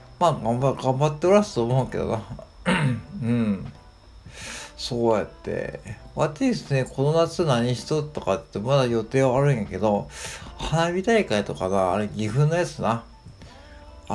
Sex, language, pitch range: male, Japanese, 110-150 Hz